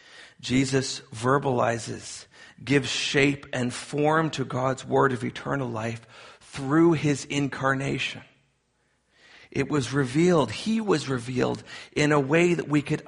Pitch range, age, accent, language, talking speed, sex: 115-150 Hz, 40-59, American, English, 125 wpm, male